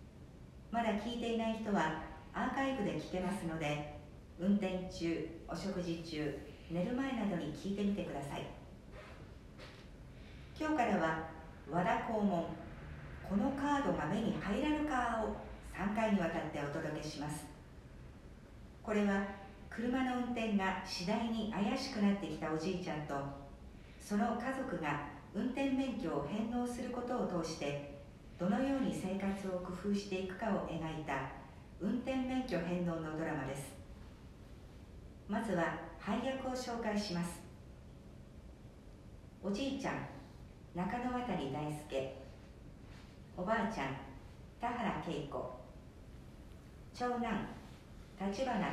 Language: Japanese